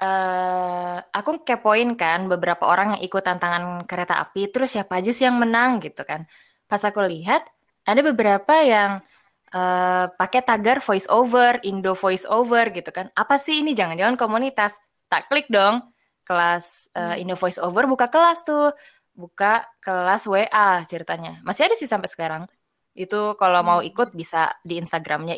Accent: native